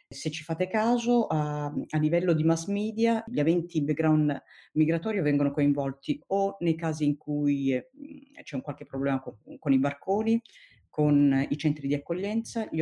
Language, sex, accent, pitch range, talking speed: Italian, female, native, 140-175 Hz, 155 wpm